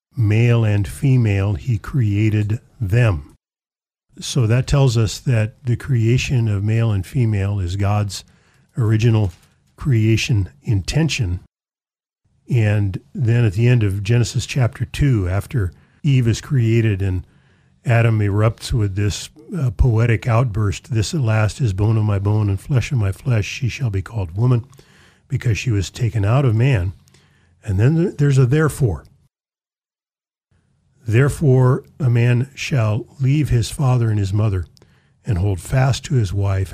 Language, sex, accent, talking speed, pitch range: English, male, American, 145 wpm, 105-130 Hz